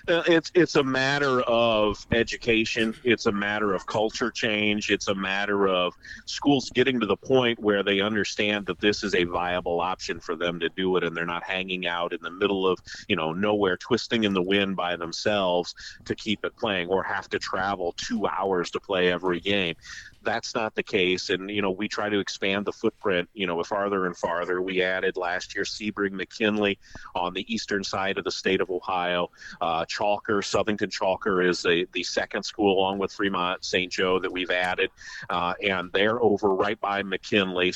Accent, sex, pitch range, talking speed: American, male, 95-110 Hz, 195 wpm